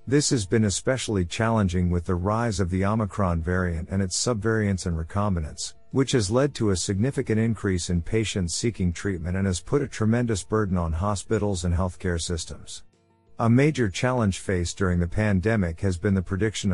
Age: 50-69